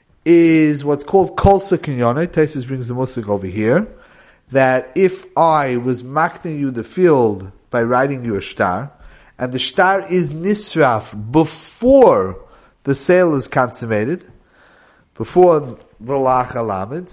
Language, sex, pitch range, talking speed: English, male, 125-170 Hz, 135 wpm